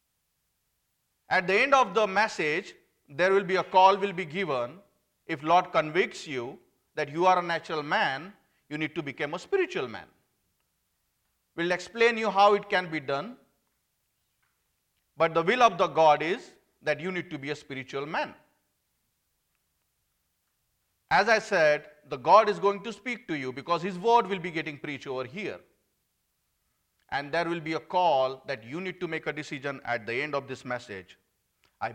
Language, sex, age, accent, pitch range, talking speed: English, male, 40-59, Indian, 140-220 Hz, 175 wpm